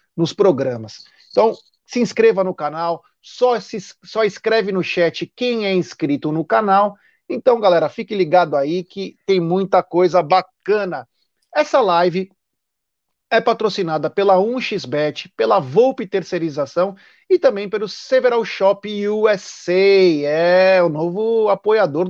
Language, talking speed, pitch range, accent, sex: Portuguese, 130 wpm, 165-210 Hz, Brazilian, male